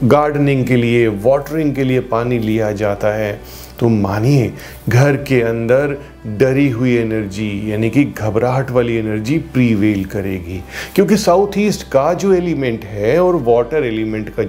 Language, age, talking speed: Hindi, 30-49, 150 wpm